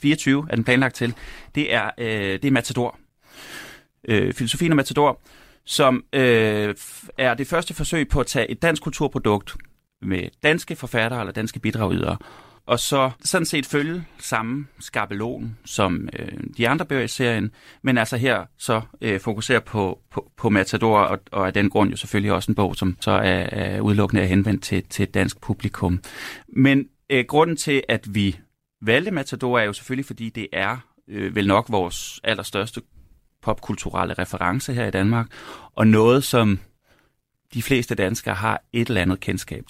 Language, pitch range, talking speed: Danish, 100-130 Hz, 165 wpm